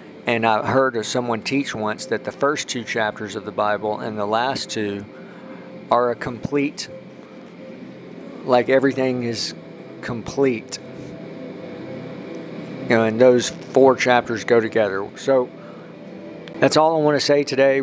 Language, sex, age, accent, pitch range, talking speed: English, male, 50-69, American, 110-135 Hz, 140 wpm